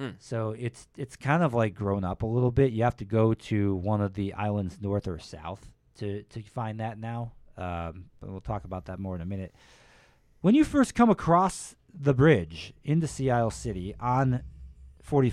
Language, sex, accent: English, male, American